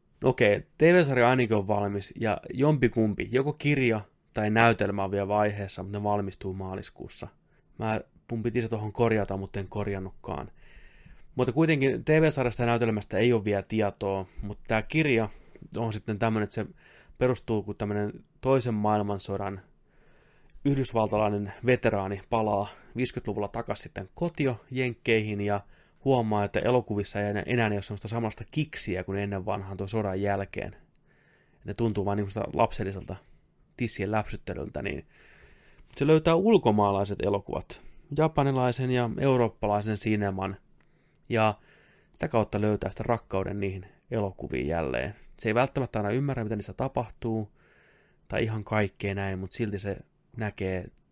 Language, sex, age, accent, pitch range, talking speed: Finnish, male, 20-39, native, 100-125 Hz, 130 wpm